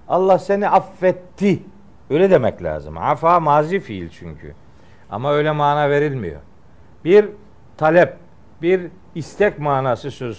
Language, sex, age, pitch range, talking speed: Turkish, male, 50-69, 125-170 Hz, 115 wpm